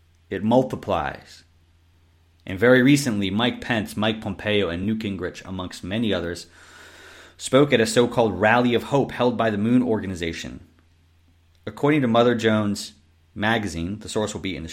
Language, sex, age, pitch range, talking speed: English, male, 30-49, 85-125 Hz, 155 wpm